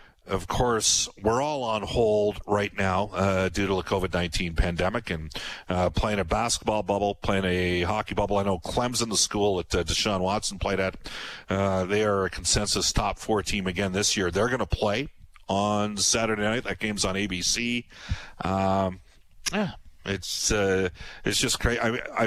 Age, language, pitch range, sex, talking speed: 50-69, English, 95-120 Hz, male, 170 wpm